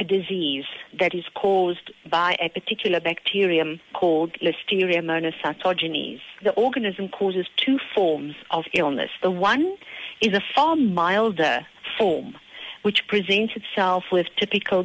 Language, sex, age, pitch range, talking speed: English, female, 50-69, 165-200 Hz, 120 wpm